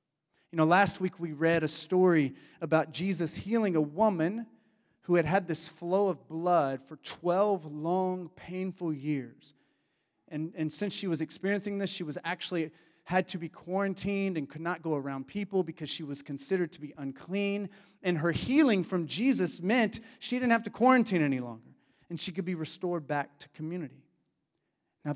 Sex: male